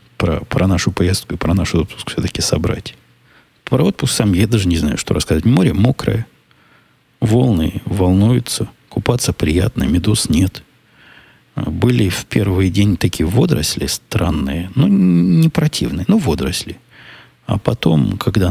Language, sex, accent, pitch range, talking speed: Russian, male, native, 90-115 Hz, 135 wpm